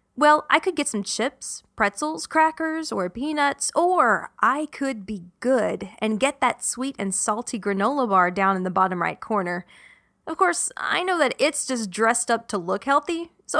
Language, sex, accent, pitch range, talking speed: English, female, American, 205-290 Hz, 185 wpm